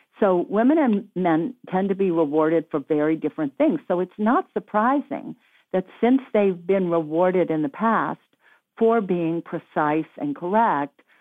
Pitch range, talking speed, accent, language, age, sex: 145-200 Hz, 155 wpm, American, English, 60-79, female